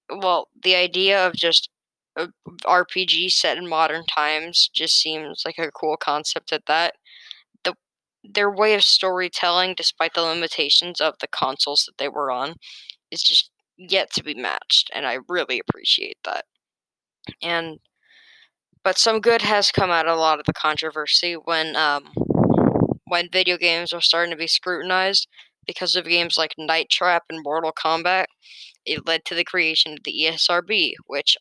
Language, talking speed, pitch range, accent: English, 165 wpm, 160-190 Hz, American